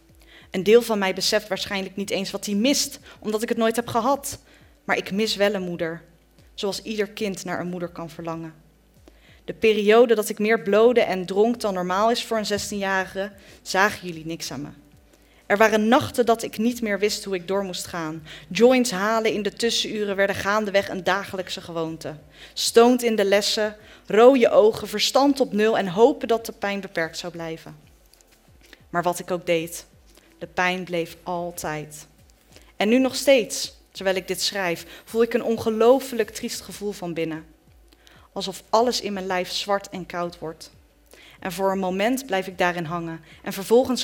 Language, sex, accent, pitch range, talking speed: Dutch, female, Dutch, 175-220 Hz, 185 wpm